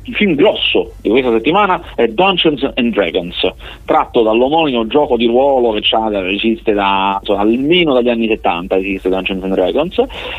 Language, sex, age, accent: Italian, male, 30-49, native